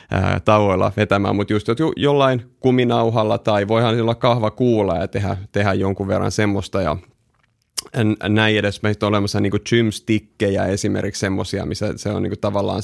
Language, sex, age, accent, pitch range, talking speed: Finnish, male, 30-49, native, 100-120 Hz, 155 wpm